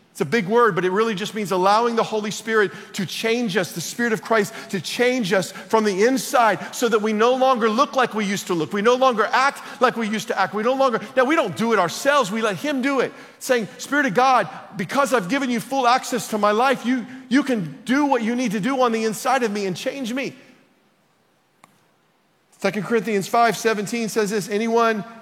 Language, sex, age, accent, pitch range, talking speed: English, male, 40-59, American, 195-240 Hz, 230 wpm